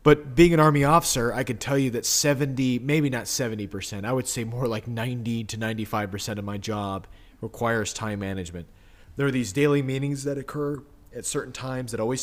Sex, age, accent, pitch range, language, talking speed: male, 30-49, American, 105-130 Hz, English, 195 wpm